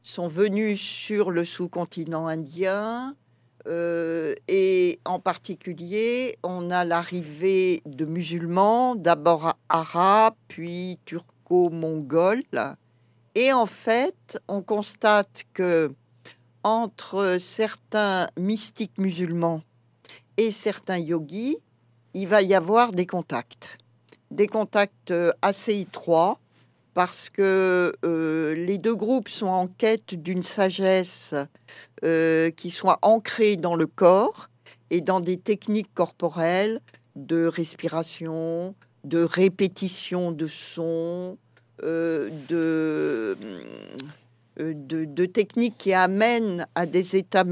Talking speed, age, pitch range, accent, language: 105 wpm, 60-79, 165-205 Hz, French, French